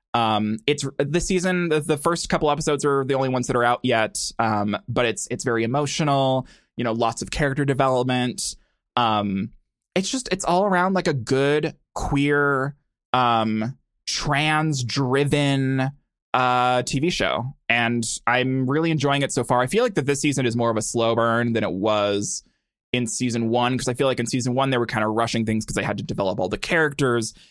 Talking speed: 200 wpm